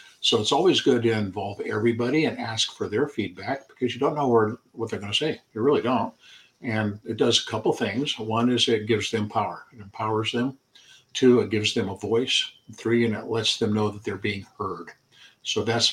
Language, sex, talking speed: English, male, 215 wpm